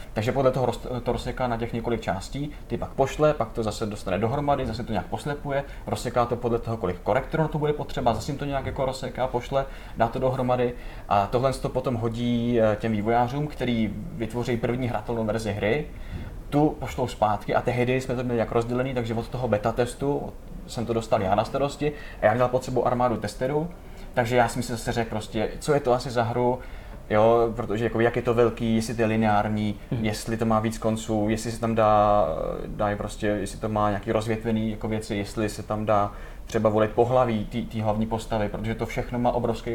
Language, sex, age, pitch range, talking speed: Czech, male, 20-39, 105-125 Hz, 205 wpm